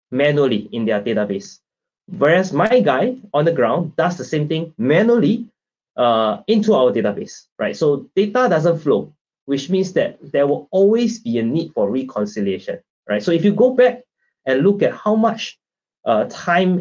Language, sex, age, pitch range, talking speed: English, male, 20-39, 125-205 Hz, 170 wpm